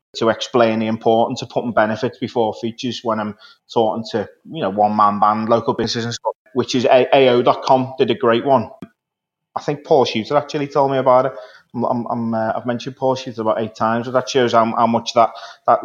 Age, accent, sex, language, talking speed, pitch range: 20-39, British, male, English, 205 wpm, 115-135 Hz